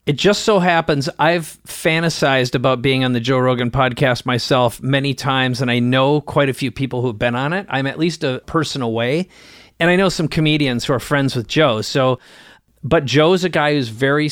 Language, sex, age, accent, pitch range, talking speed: English, male, 40-59, American, 130-165 Hz, 215 wpm